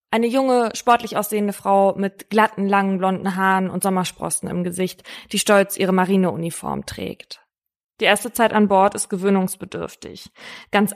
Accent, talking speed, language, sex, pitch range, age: German, 150 wpm, German, female, 190-220 Hz, 20-39